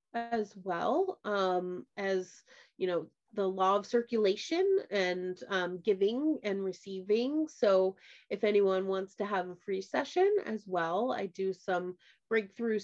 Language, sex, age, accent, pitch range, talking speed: English, female, 30-49, American, 185-265 Hz, 140 wpm